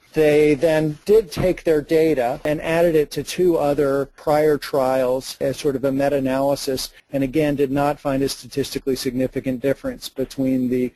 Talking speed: 165 wpm